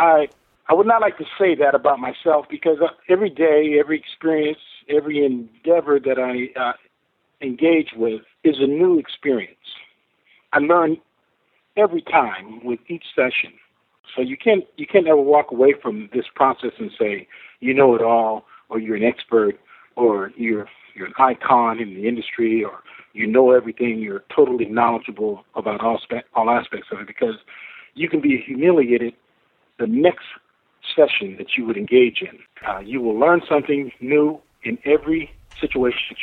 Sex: male